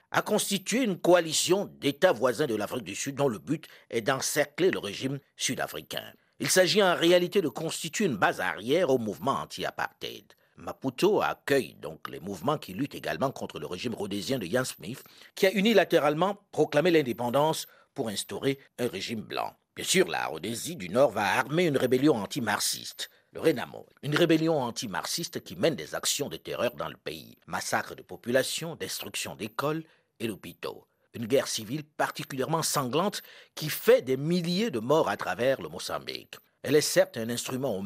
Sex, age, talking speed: male, 50-69, 170 wpm